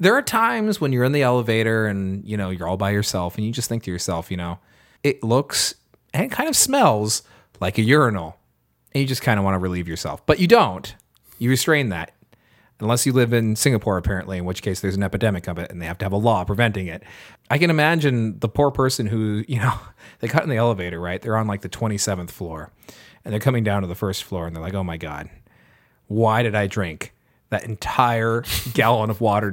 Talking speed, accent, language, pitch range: 230 wpm, American, English, 95-135 Hz